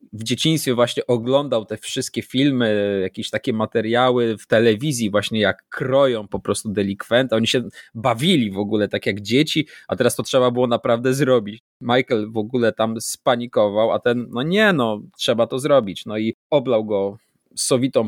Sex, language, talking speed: male, Polish, 170 wpm